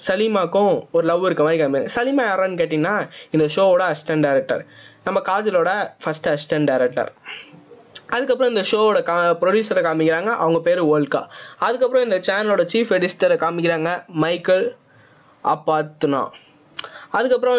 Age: 20-39